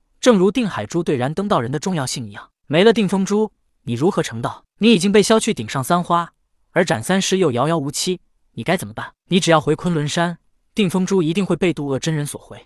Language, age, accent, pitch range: Chinese, 20-39, native, 135-185 Hz